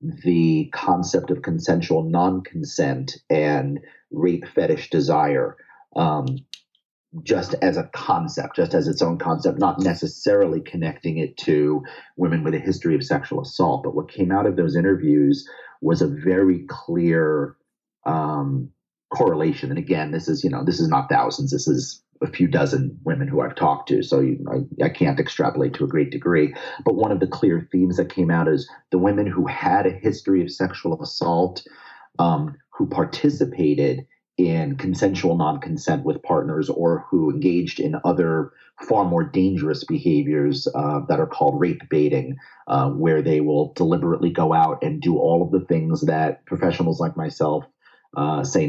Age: 40-59